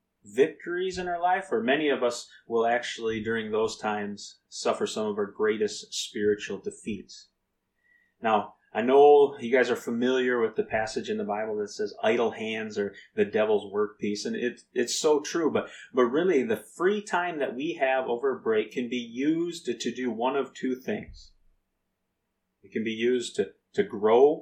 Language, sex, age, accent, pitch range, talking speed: English, male, 30-49, American, 105-180 Hz, 180 wpm